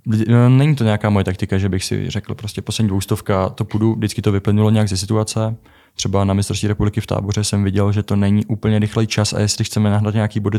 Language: Czech